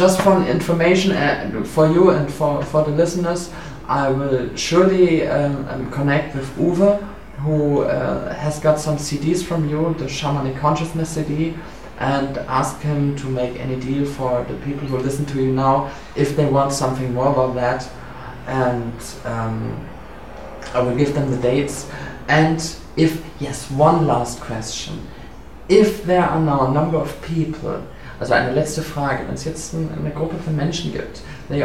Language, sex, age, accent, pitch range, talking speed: German, male, 20-39, German, 130-165 Hz, 165 wpm